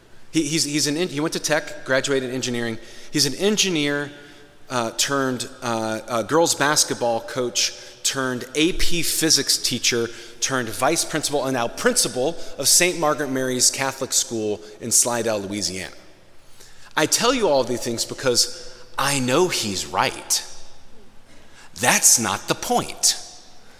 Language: English